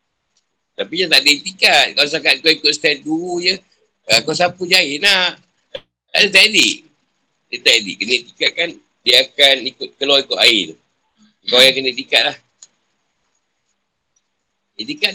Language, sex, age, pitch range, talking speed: Malay, male, 50-69, 125-175 Hz, 150 wpm